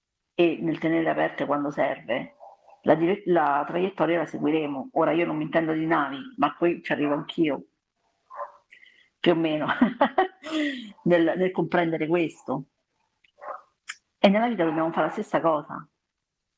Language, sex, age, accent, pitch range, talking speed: Italian, female, 50-69, native, 160-245 Hz, 140 wpm